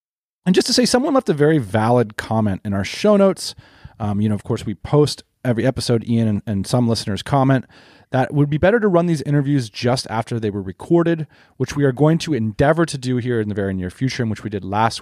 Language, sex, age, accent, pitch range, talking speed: English, male, 30-49, American, 110-160 Hz, 250 wpm